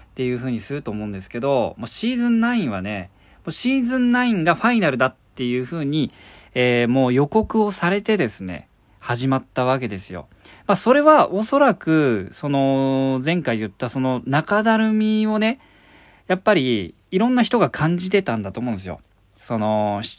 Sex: male